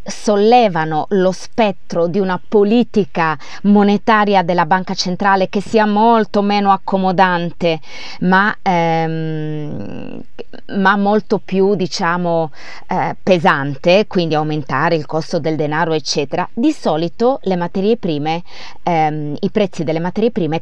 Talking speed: 115 wpm